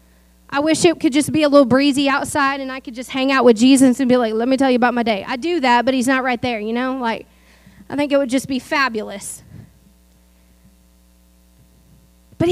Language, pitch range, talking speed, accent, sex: English, 205-295 Hz, 225 wpm, American, female